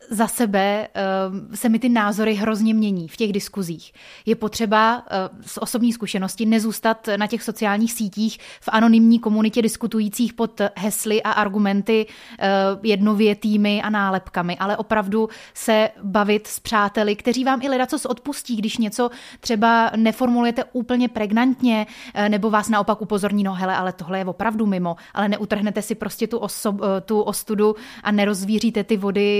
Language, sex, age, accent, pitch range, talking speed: Czech, female, 30-49, native, 205-230 Hz, 160 wpm